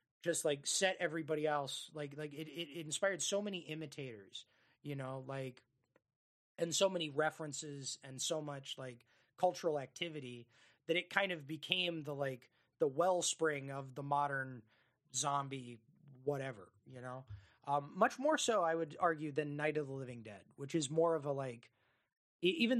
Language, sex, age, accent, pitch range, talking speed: English, male, 20-39, American, 125-160 Hz, 165 wpm